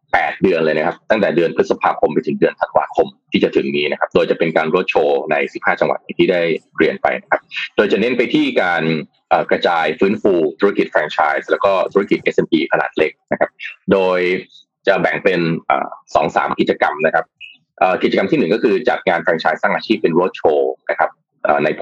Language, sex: Thai, male